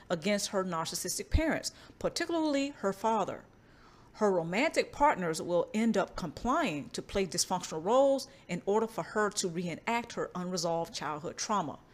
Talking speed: 140 wpm